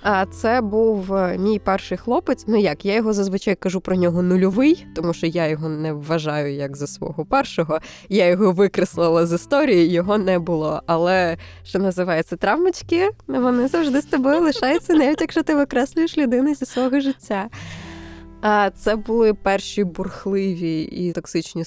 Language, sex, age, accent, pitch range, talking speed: Ukrainian, female, 20-39, native, 165-225 Hz, 160 wpm